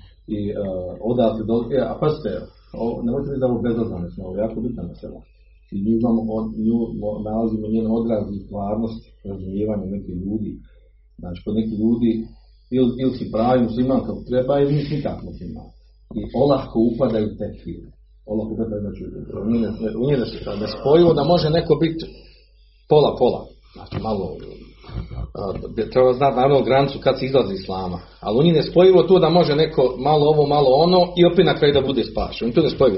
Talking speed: 165 wpm